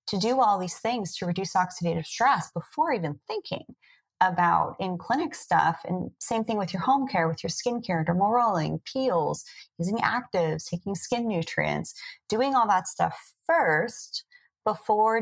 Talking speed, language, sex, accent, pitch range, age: 160 wpm, English, female, American, 170-235 Hz, 30-49